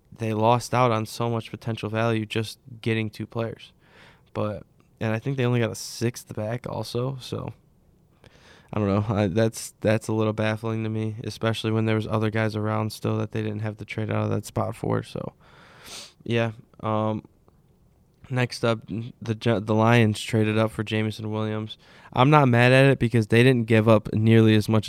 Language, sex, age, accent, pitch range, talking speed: English, male, 20-39, American, 105-115 Hz, 190 wpm